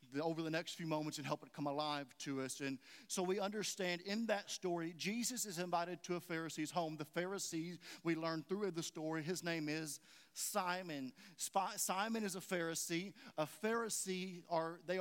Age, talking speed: 40-59, 180 wpm